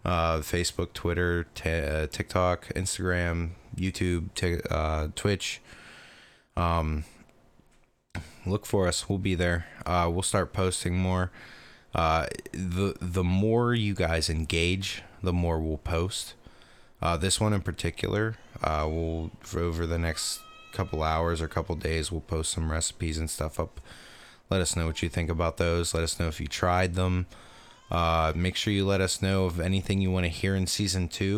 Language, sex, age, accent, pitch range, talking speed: English, male, 20-39, American, 85-95 Hz, 170 wpm